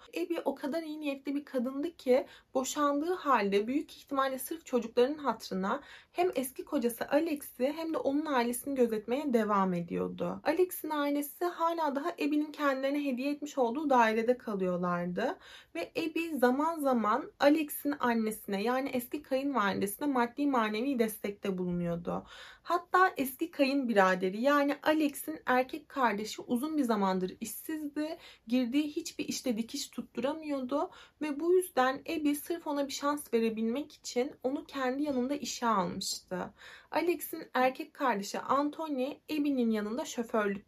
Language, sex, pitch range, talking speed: Turkish, female, 240-300 Hz, 130 wpm